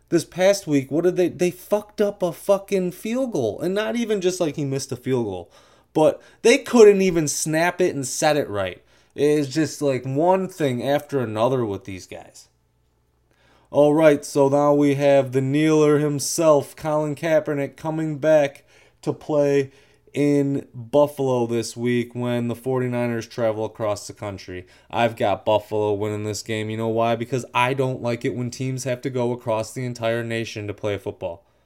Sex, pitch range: male, 105-150 Hz